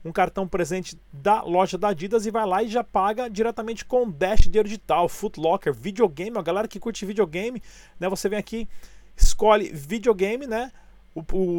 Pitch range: 175-220 Hz